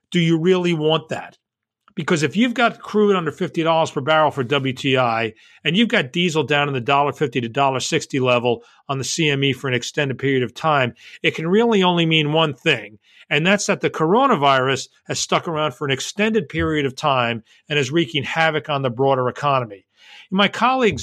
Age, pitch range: 40-59, 135-175 Hz